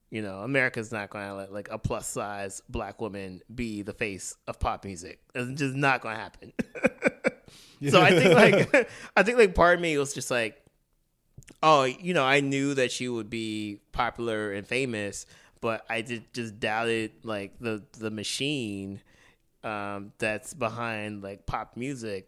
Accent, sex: American, male